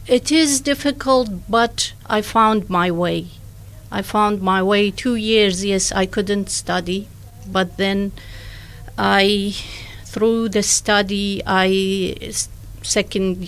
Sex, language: female, English